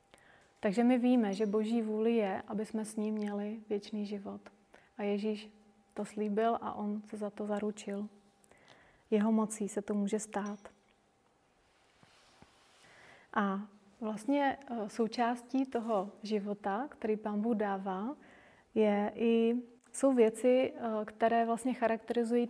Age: 30-49